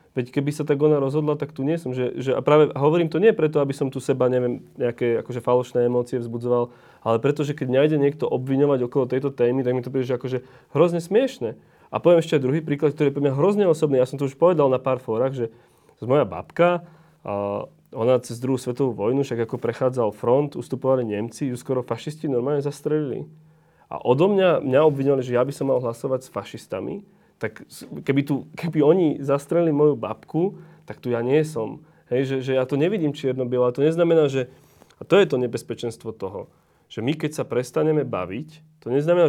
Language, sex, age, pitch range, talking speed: Slovak, male, 30-49, 120-155 Hz, 210 wpm